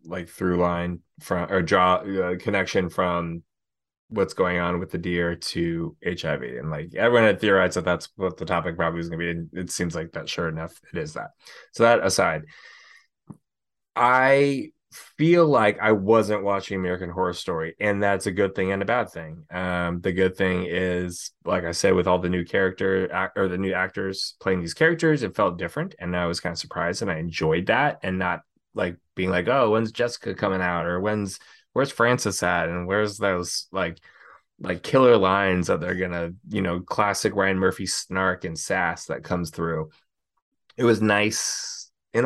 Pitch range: 90-105 Hz